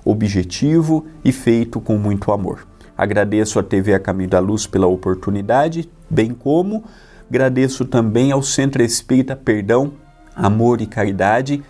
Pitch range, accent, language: 95-125 Hz, Brazilian, Portuguese